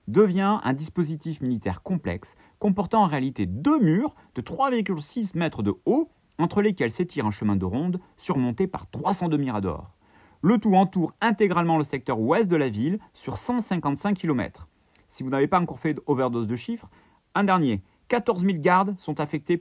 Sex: male